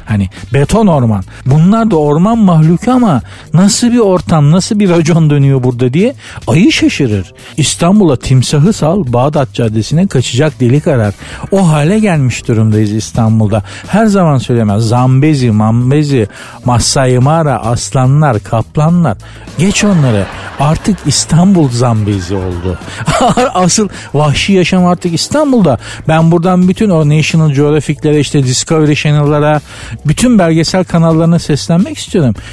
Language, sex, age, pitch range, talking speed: Turkish, male, 60-79, 120-175 Hz, 120 wpm